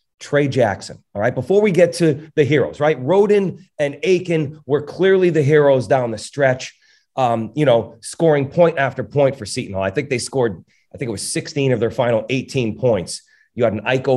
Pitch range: 120-150 Hz